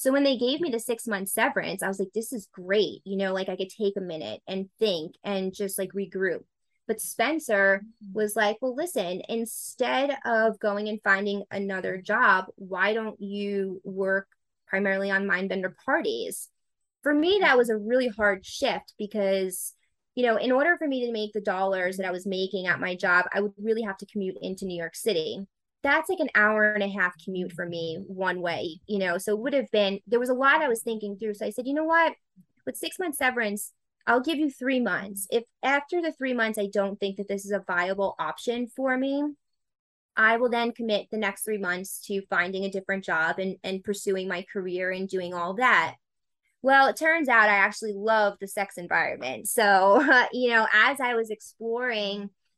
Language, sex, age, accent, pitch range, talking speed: English, female, 20-39, American, 195-235 Hz, 210 wpm